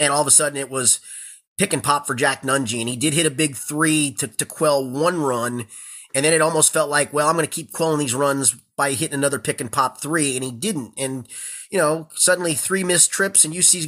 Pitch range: 145-190 Hz